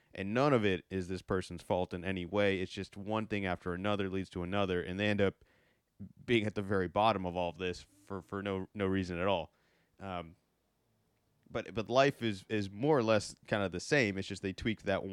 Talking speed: 230 wpm